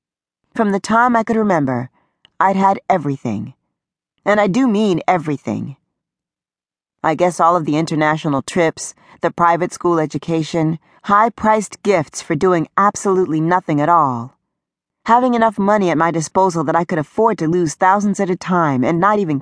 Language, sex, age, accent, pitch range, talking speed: English, female, 40-59, American, 145-195 Hz, 165 wpm